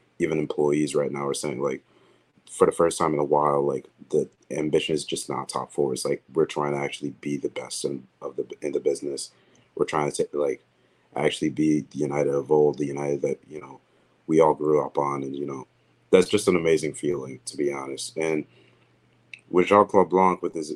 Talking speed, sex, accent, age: 215 wpm, male, American, 30-49